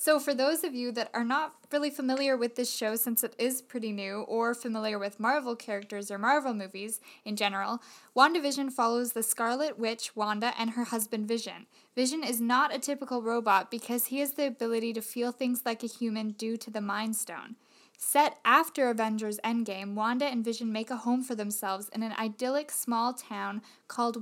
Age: 10-29